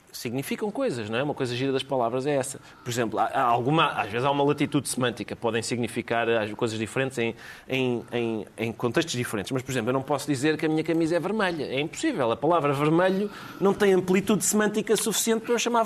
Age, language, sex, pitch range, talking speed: 30-49, Portuguese, male, 140-225 Hz, 200 wpm